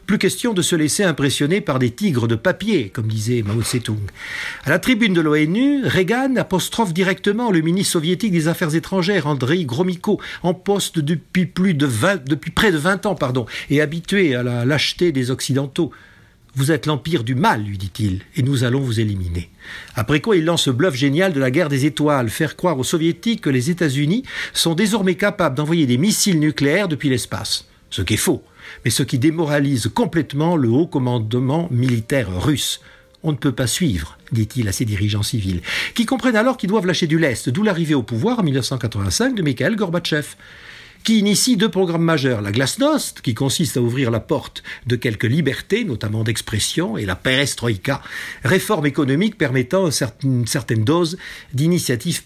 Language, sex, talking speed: French, male, 180 wpm